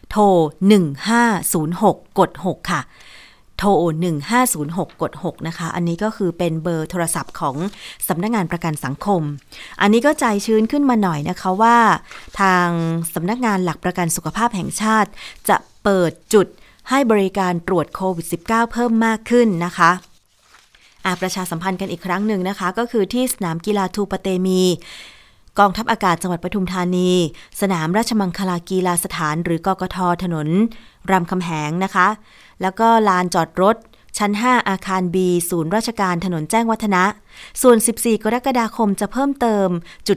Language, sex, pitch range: Thai, female, 175-220 Hz